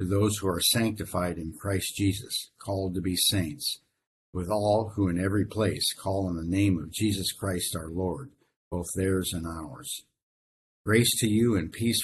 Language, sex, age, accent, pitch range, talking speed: English, male, 50-69, American, 85-100 Hz, 180 wpm